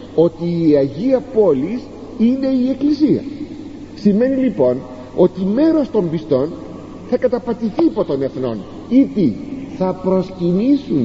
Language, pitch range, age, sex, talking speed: Greek, 175-265 Hz, 50-69, male, 115 wpm